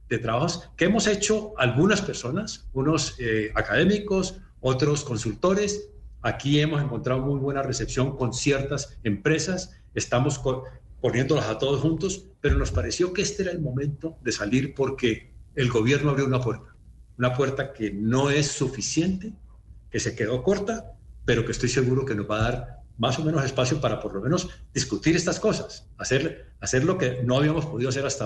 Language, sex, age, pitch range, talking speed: Spanish, male, 50-69, 115-155 Hz, 175 wpm